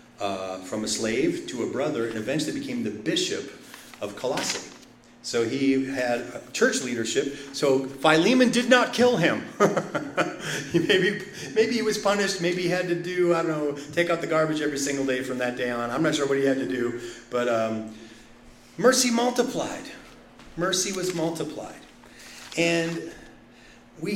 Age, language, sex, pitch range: 40-59, English, male, 120-170 Hz